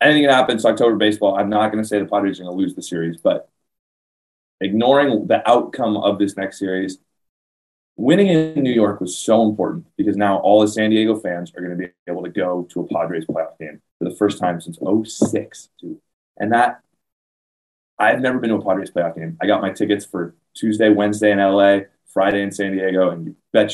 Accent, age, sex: American, 20-39, male